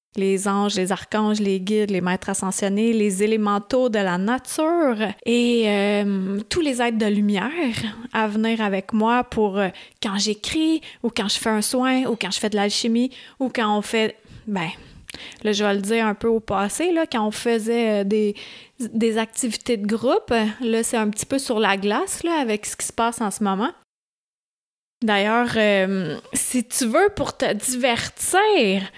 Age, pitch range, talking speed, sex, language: 30-49, 205-255 Hz, 185 wpm, female, French